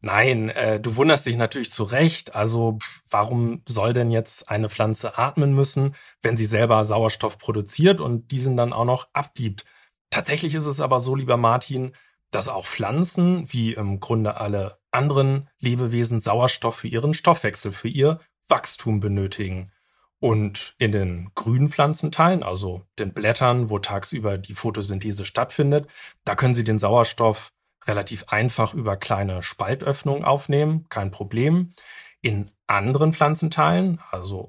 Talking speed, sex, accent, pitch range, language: 145 wpm, male, German, 105-140 Hz, German